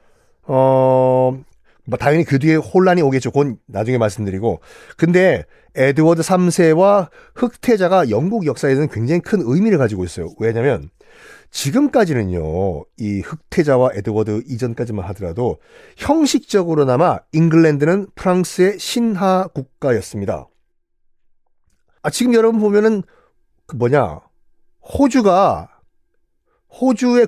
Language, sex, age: Korean, male, 40-59